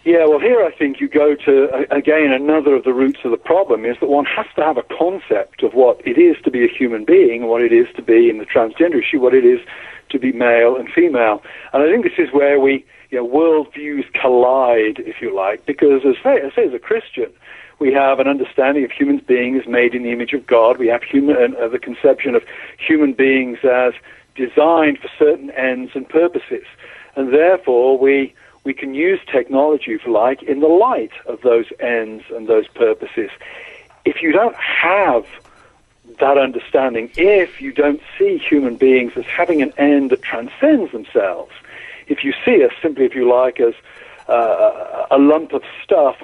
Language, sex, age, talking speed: English, male, 60-79, 195 wpm